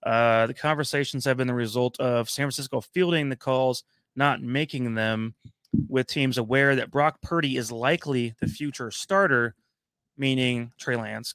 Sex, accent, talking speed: male, American, 160 wpm